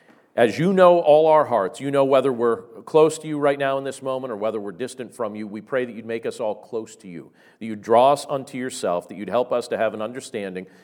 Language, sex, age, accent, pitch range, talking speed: English, male, 40-59, American, 105-135 Hz, 265 wpm